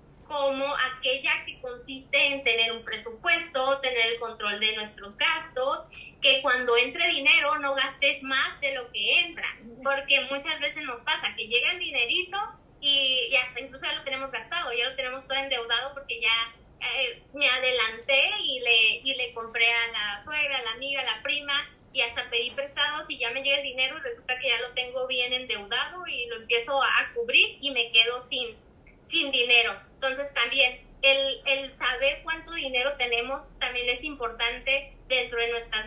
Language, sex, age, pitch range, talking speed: Spanish, female, 20-39, 245-290 Hz, 185 wpm